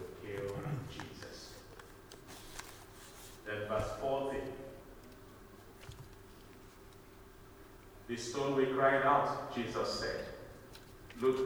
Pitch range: 105-140 Hz